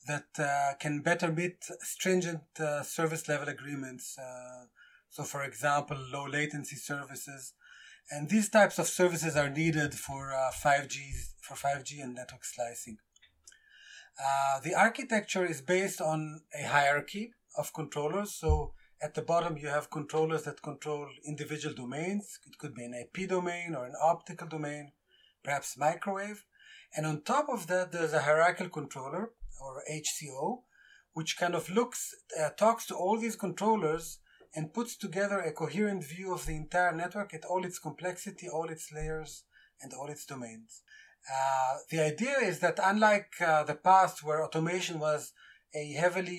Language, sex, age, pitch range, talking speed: English, male, 30-49, 145-180 Hz, 155 wpm